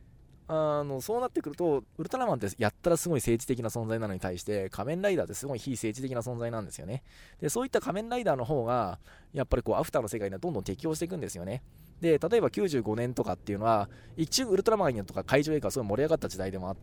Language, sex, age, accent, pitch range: Japanese, male, 20-39, native, 95-145 Hz